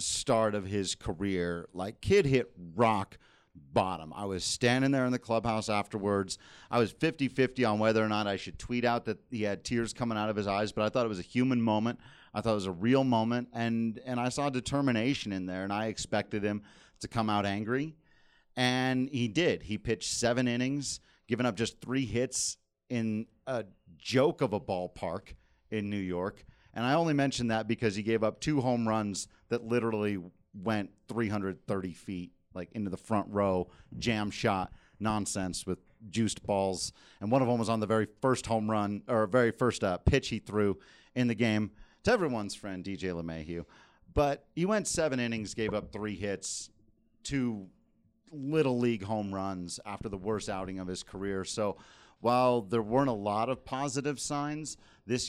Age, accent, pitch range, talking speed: 40-59, American, 100-125 Hz, 190 wpm